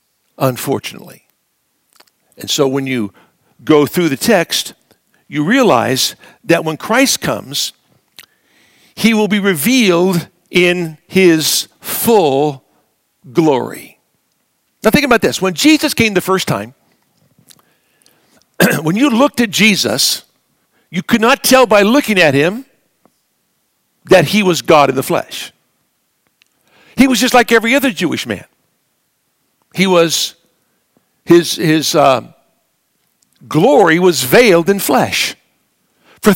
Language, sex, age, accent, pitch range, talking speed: English, male, 60-79, American, 160-235 Hz, 120 wpm